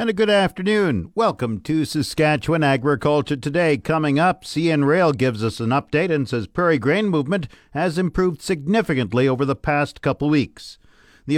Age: 50-69